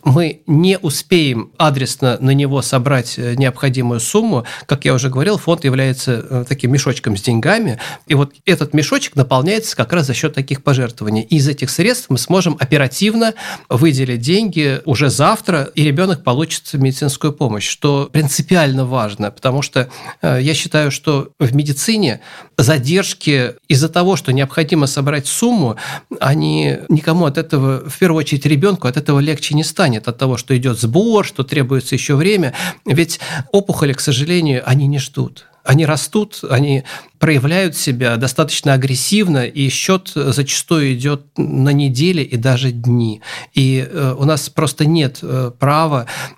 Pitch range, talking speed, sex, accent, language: 130-160 Hz, 150 wpm, male, native, Russian